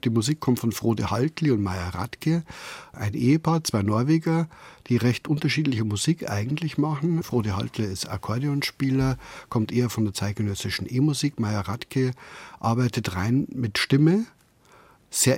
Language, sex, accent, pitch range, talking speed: German, male, German, 105-130 Hz, 140 wpm